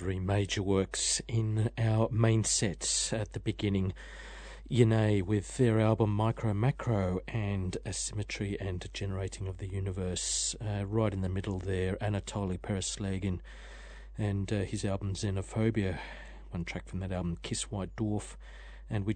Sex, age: male, 40-59